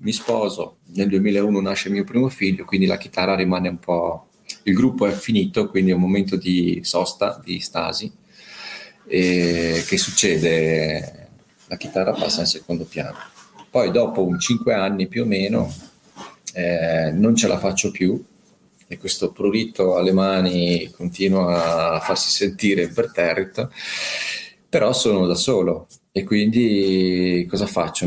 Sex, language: male, Italian